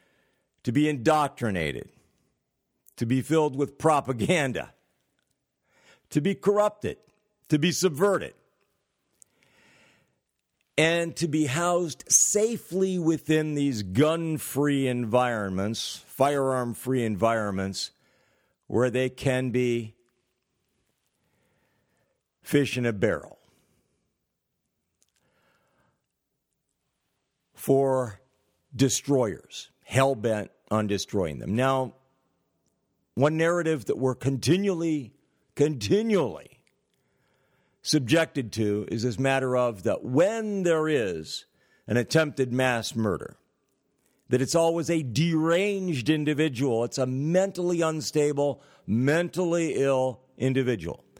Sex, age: male, 60-79